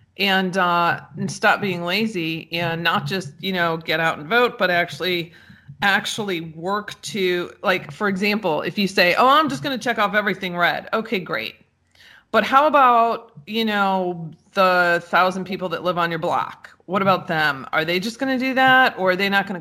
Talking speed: 200 wpm